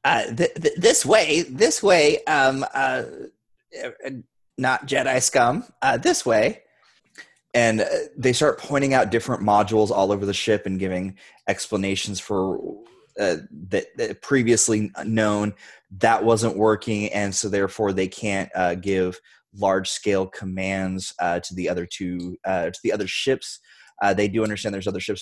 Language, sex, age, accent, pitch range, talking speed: English, male, 20-39, American, 95-115 Hz, 155 wpm